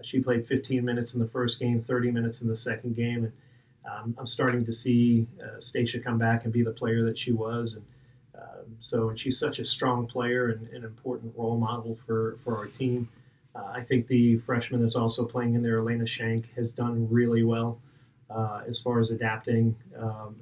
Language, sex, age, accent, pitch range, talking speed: English, male, 30-49, American, 115-125 Hz, 210 wpm